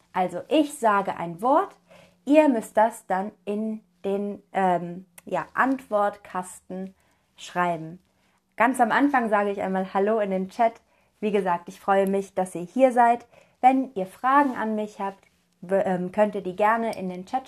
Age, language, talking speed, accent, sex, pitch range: 30-49, German, 160 wpm, German, female, 190-245 Hz